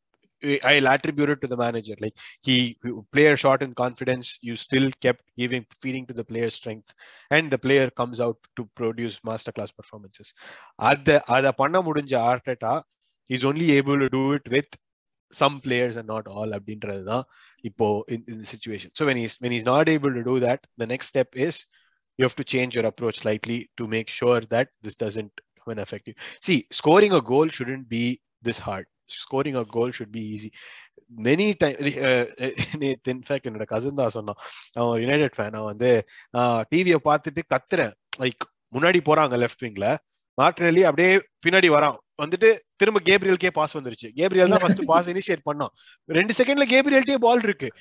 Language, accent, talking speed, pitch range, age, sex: Tamil, native, 165 wpm, 120-170 Hz, 20-39, male